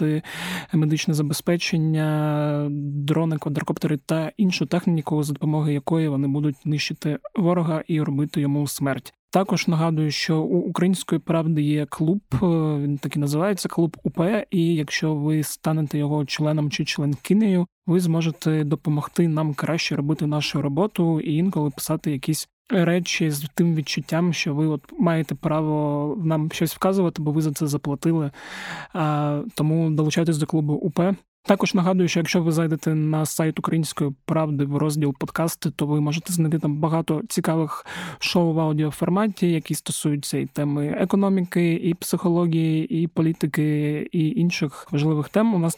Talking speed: 145 wpm